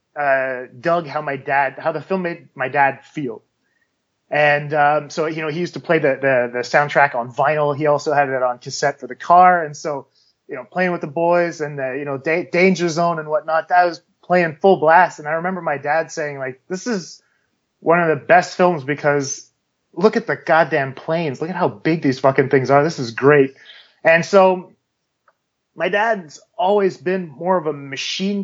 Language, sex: English, male